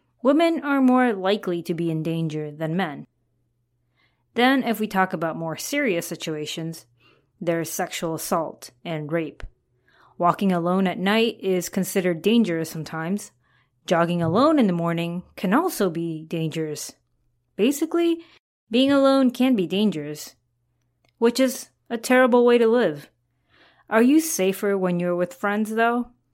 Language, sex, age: English, female, 20-39